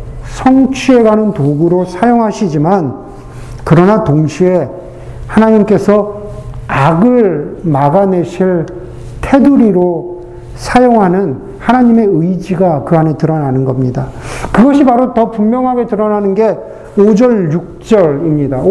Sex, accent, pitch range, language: male, native, 160-240 Hz, Korean